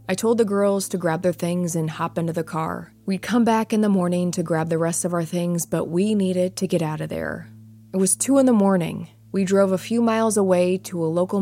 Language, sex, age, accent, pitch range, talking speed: English, female, 20-39, American, 160-195 Hz, 255 wpm